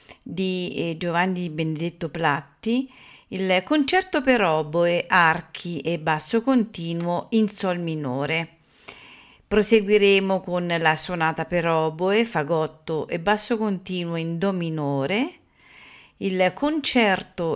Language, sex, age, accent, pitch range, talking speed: Italian, female, 50-69, native, 160-200 Hz, 105 wpm